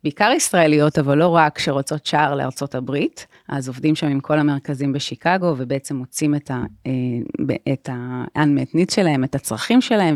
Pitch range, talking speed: 140-165 Hz, 150 wpm